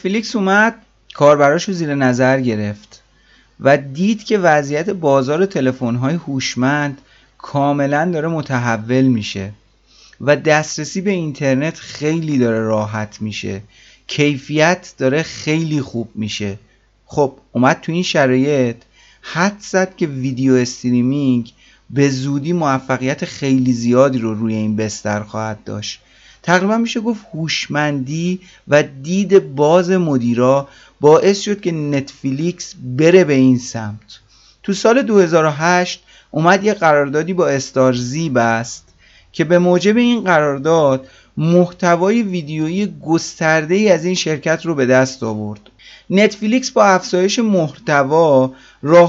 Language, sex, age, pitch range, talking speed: Persian, male, 30-49, 130-180 Hz, 120 wpm